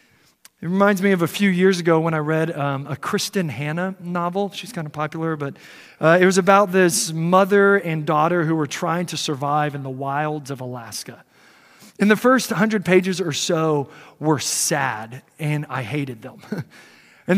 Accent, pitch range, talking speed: American, 165-255 Hz, 185 wpm